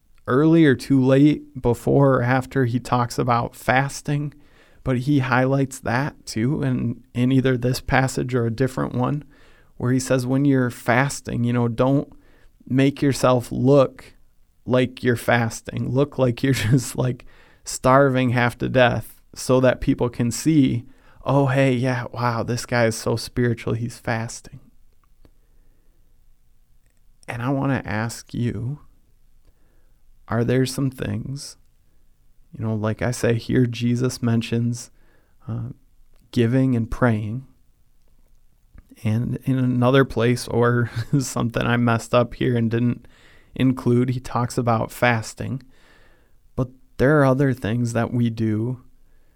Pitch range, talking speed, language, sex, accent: 115-130 Hz, 135 wpm, English, male, American